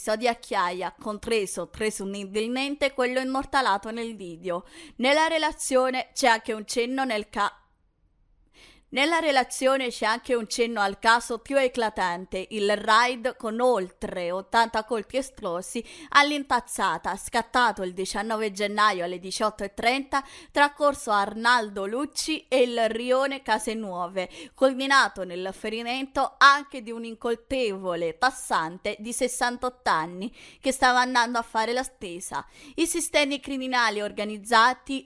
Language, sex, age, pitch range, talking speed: Italian, female, 20-39, 210-265 Hz, 120 wpm